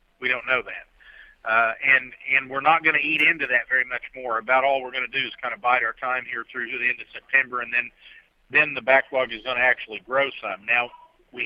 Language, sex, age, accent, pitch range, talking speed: English, male, 50-69, American, 120-140 Hz, 255 wpm